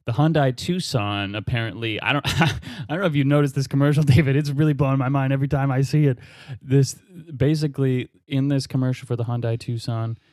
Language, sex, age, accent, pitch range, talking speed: English, male, 20-39, American, 130-155 Hz, 200 wpm